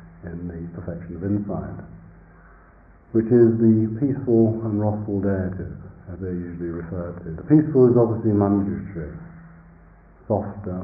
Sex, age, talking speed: male, 50-69, 125 wpm